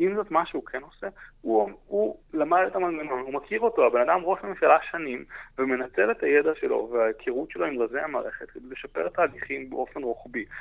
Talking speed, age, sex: 190 wpm, 30-49, male